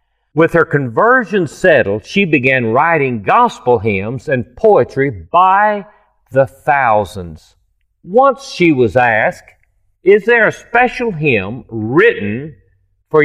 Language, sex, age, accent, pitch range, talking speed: English, male, 40-59, American, 105-170 Hz, 115 wpm